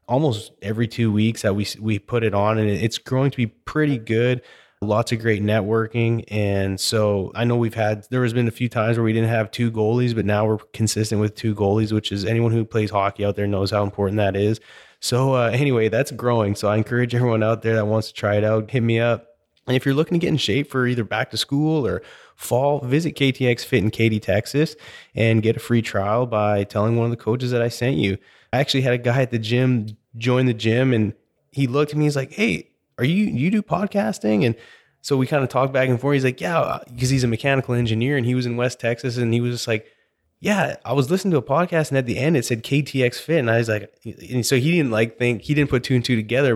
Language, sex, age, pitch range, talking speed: English, male, 20-39, 110-130 Hz, 255 wpm